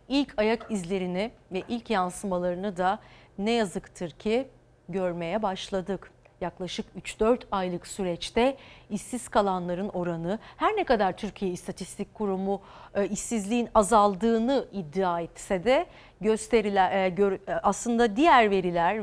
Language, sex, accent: Turkish, female, native